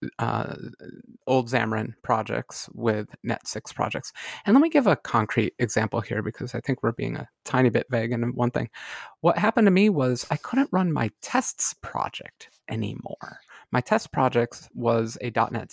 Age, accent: 30-49, American